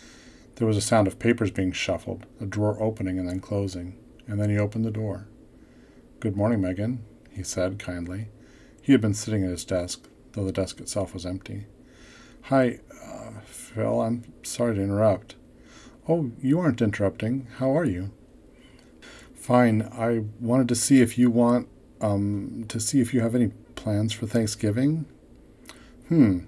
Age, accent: 40-59, American